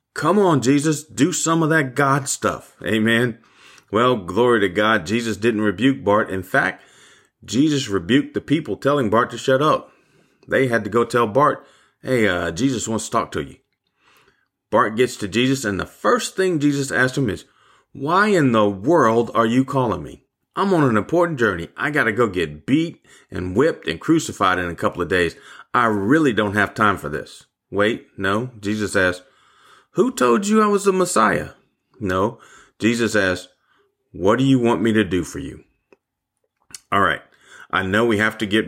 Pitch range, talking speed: 100-130 Hz, 190 wpm